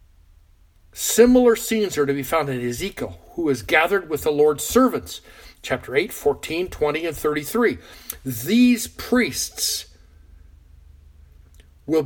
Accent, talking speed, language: American, 120 wpm, English